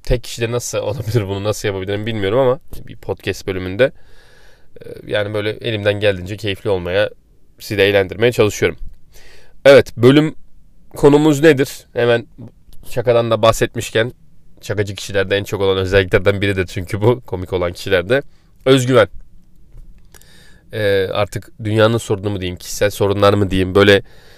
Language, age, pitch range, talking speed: Turkish, 30-49, 100-120 Hz, 135 wpm